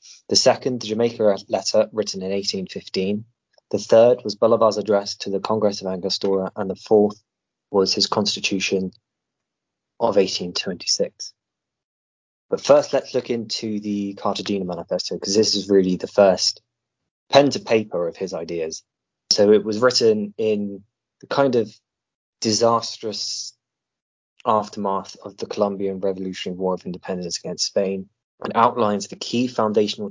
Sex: male